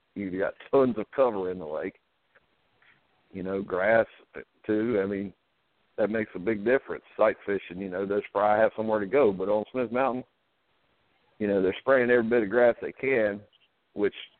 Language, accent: English, American